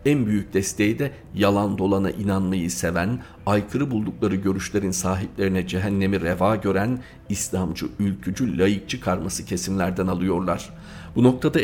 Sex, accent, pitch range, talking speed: male, native, 95-110 Hz, 120 wpm